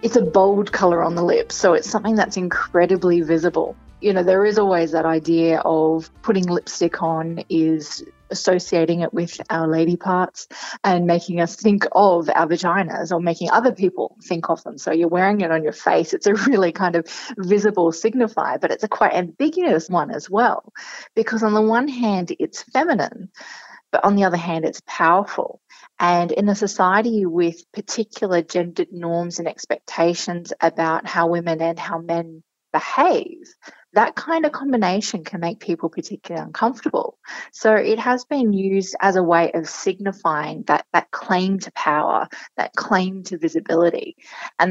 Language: English